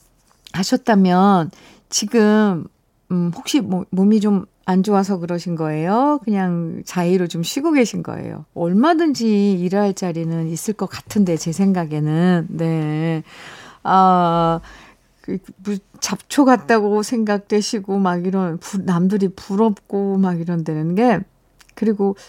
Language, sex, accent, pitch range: Korean, female, native, 175-225 Hz